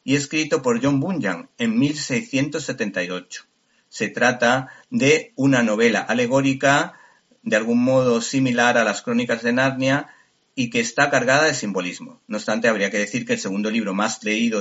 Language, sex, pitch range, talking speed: Spanish, male, 130-200 Hz, 160 wpm